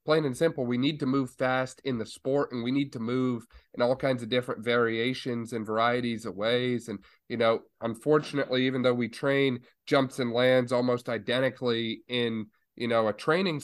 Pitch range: 110-130 Hz